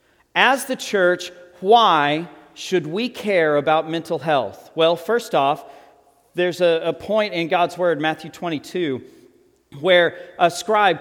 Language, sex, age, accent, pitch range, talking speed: English, male, 40-59, American, 135-180 Hz, 135 wpm